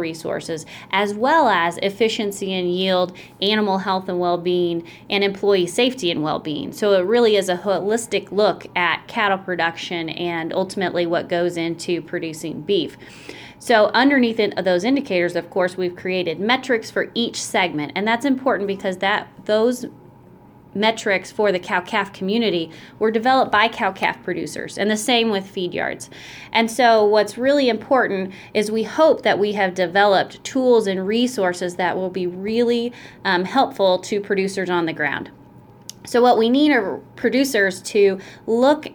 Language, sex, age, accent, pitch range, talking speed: English, female, 30-49, American, 180-220 Hz, 160 wpm